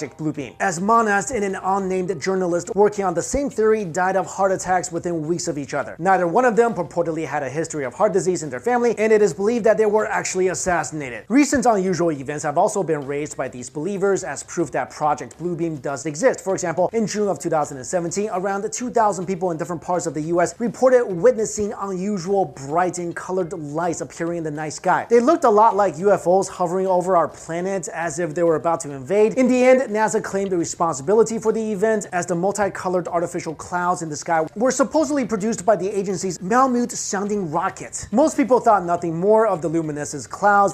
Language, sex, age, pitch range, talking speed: English, male, 30-49, 170-210 Hz, 205 wpm